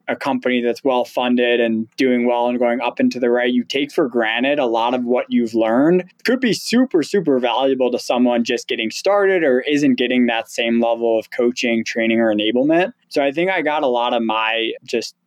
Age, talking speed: 20-39, 220 wpm